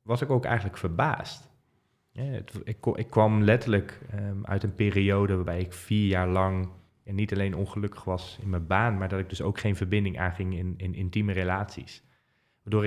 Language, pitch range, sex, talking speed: Dutch, 100-120 Hz, male, 190 wpm